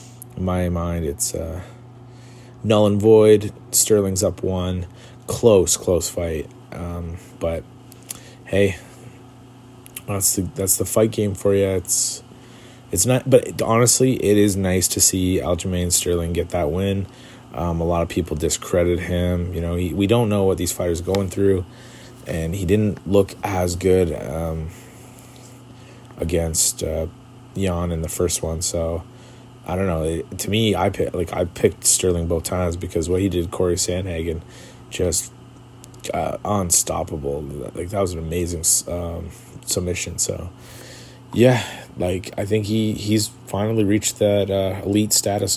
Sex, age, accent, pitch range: male, 30-49, American, 90-125 Hz